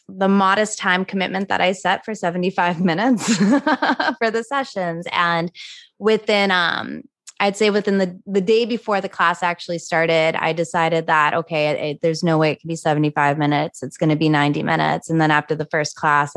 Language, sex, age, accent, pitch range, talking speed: English, female, 20-39, American, 165-200 Hz, 185 wpm